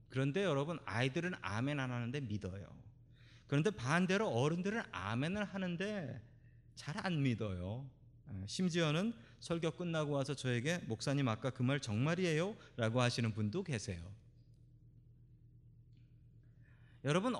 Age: 30-49